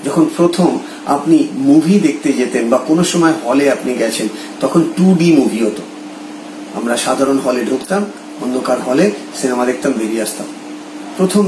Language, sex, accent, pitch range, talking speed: Bengali, male, native, 130-185 Hz, 135 wpm